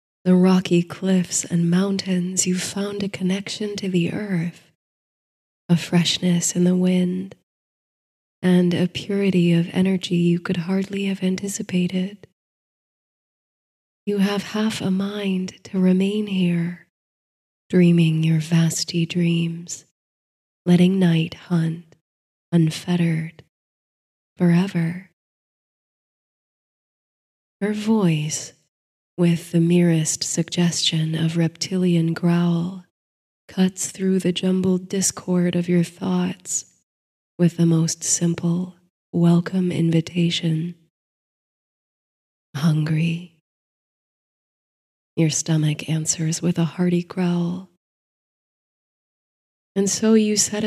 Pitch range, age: 165-185 Hz, 20-39